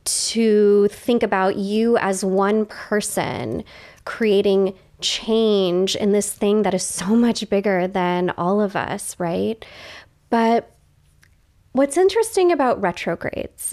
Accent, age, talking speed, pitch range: American, 20-39, 120 wpm, 185-235 Hz